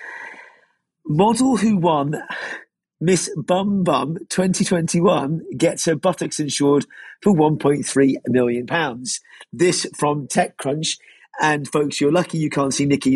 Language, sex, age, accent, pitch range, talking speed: English, male, 40-59, British, 145-185 Hz, 110 wpm